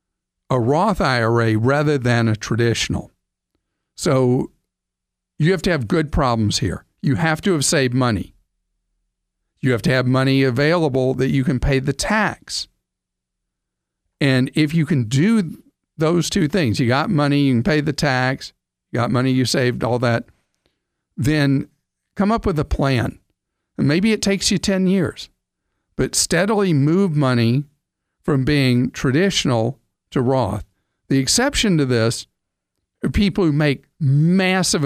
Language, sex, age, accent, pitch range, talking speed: English, male, 50-69, American, 115-155 Hz, 150 wpm